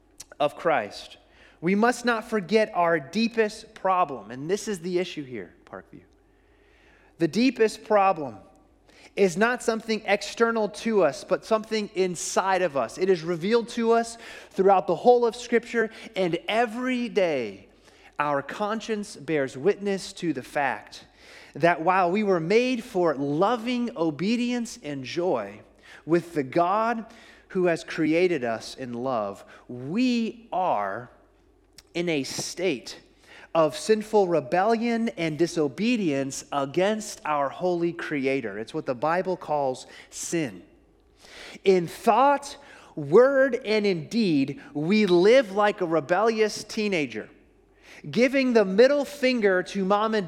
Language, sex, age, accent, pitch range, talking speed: English, male, 30-49, American, 170-230 Hz, 130 wpm